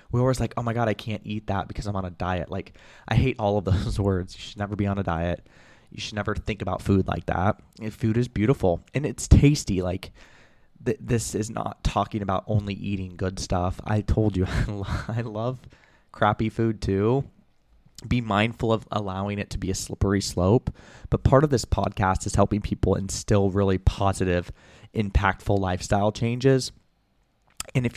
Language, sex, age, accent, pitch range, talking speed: English, male, 20-39, American, 95-115 Hz, 185 wpm